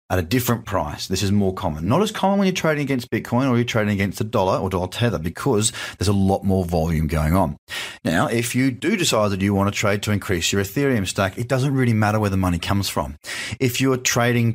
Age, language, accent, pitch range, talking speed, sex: 30-49, English, Australian, 90-120 Hz, 250 wpm, male